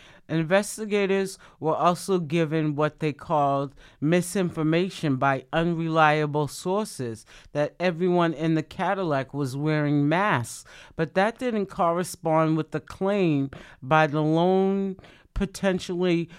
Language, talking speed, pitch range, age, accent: English, 110 wpm, 140-180 Hz, 40-59, American